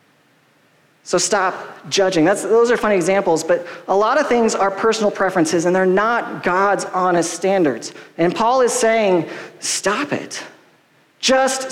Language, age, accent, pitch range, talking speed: English, 40-59, American, 170-225 Hz, 145 wpm